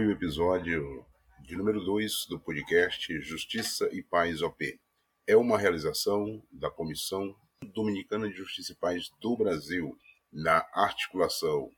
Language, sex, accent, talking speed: Portuguese, male, Brazilian, 120 wpm